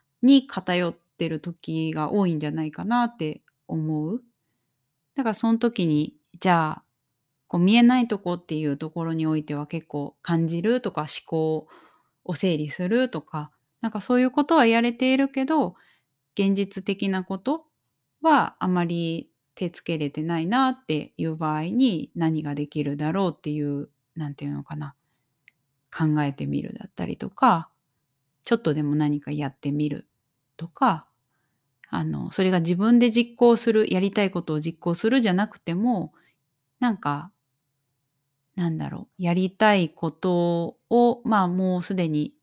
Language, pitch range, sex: Japanese, 150-205 Hz, female